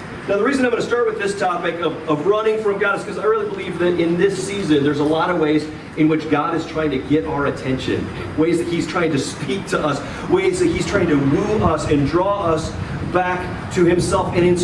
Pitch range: 150-195 Hz